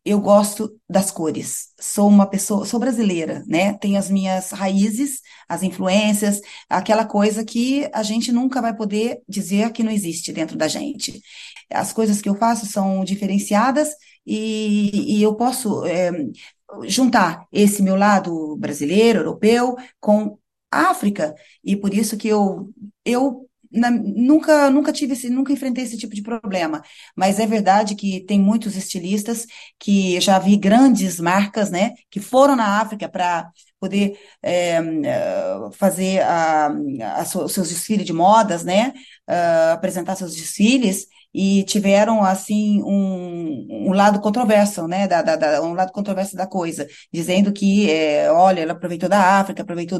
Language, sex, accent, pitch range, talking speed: Portuguese, female, Brazilian, 190-230 Hz, 150 wpm